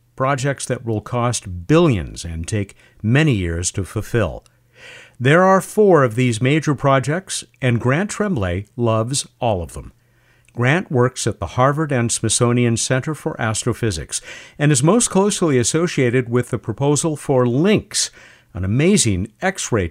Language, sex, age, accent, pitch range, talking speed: English, male, 50-69, American, 110-165 Hz, 145 wpm